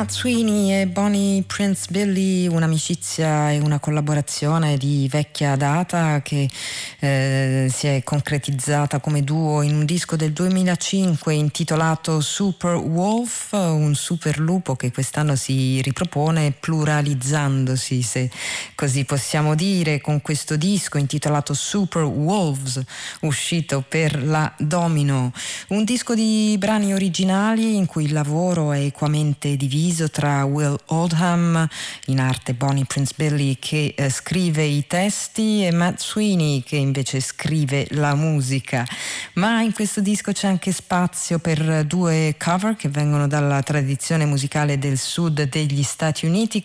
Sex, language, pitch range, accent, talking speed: female, Italian, 140-175 Hz, native, 130 wpm